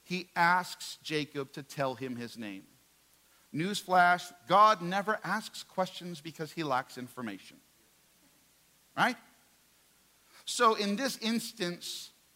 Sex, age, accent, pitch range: male, 50-69, American, 115-175 Hz